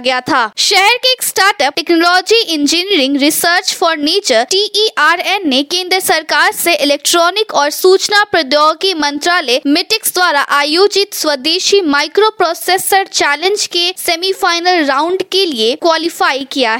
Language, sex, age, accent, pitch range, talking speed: Hindi, female, 20-39, native, 250-350 Hz, 120 wpm